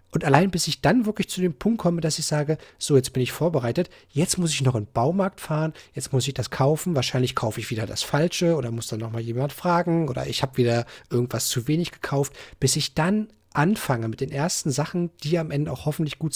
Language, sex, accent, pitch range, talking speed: German, male, German, 125-145 Hz, 240 wpm